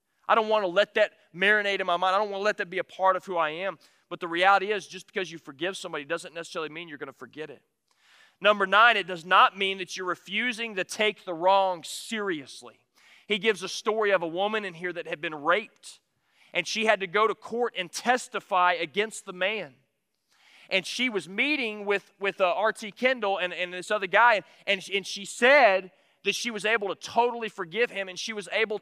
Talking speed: 225 wpm